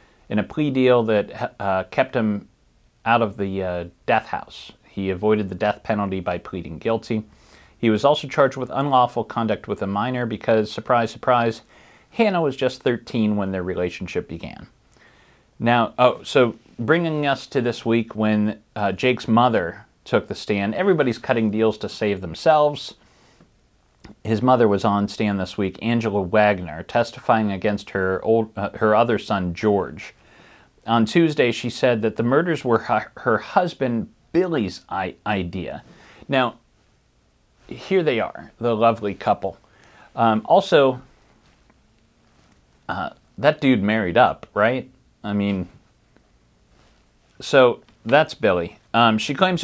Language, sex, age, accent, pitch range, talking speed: English, male, 40-59, American, 100-125 Hz, 140 wpm